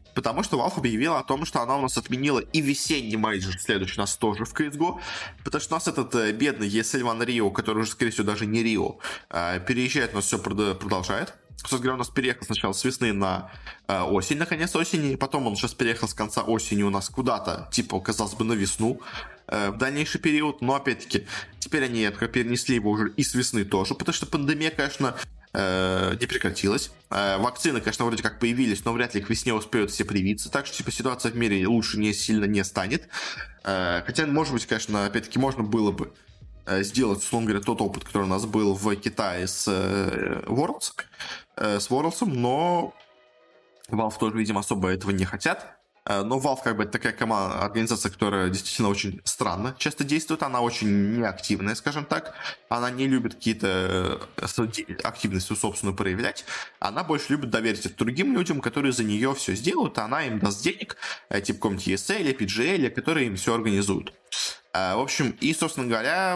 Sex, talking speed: male, 175 wpm